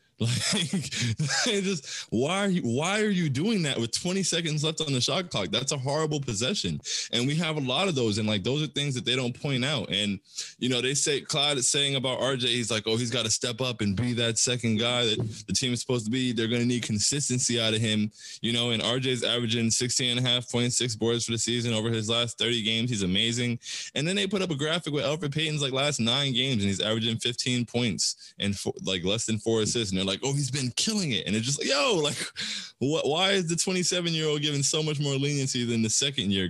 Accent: American